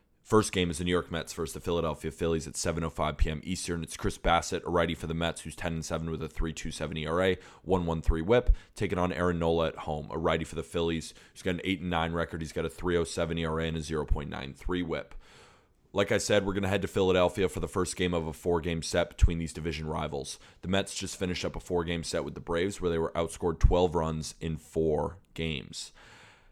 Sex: male